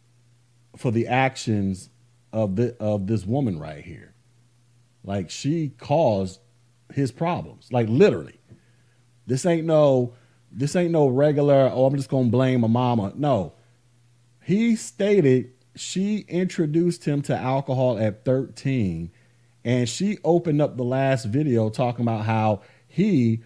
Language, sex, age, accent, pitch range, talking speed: English, male, 30-49, American, 120-145 Hz, 135 wpm